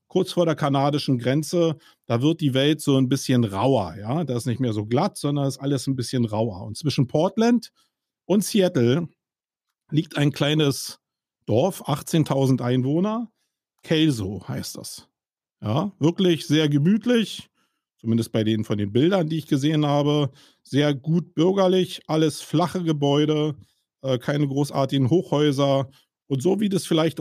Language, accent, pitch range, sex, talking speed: German, German, 135-175 Hz, male, 150 wpm